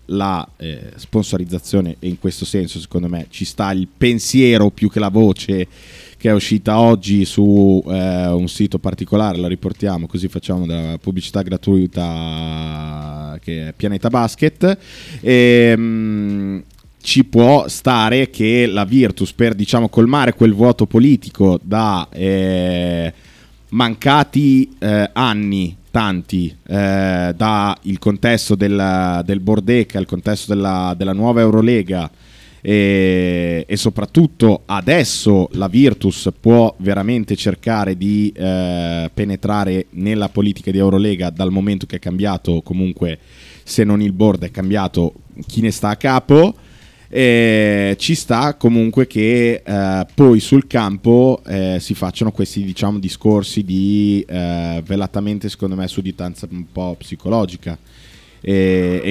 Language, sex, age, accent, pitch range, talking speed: Italian, male, 20-39, native, 90-110 Hz, 130 wpm